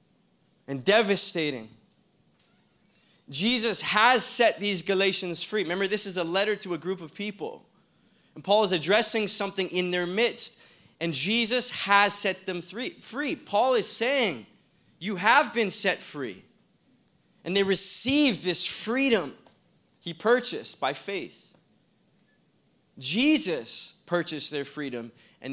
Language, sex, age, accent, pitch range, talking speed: English, male, 20-39, American, 150-215 Hz, 125 wpm